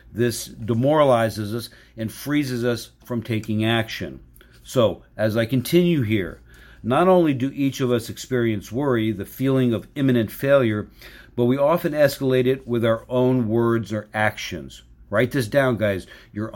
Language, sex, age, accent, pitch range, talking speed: English, male, 50-69, American, 110-135 Hz, 155 wpm